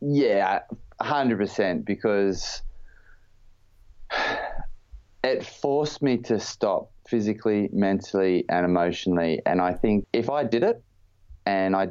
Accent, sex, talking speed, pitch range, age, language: Australian, male, 105 wpm, 95-105 Hz, 20-39, English